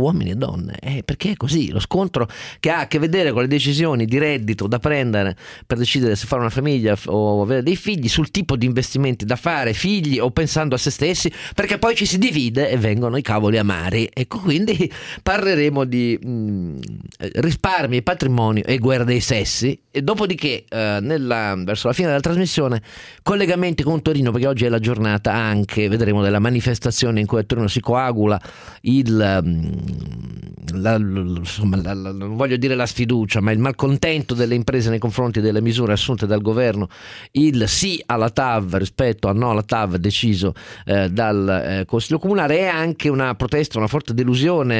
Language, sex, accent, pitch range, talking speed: Italian, male, native, 105-140 Hz, 180 wpm